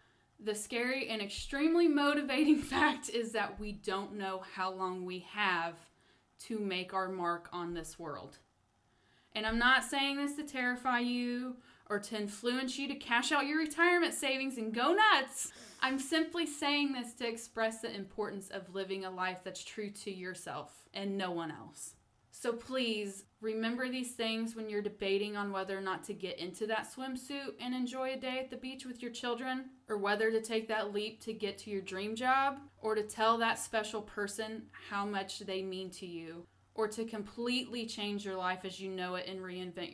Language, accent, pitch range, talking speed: English, American, 185-240 Hz, 190 wpm